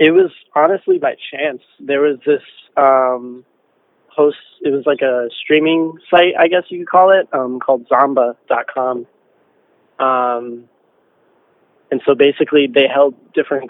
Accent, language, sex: American, English, male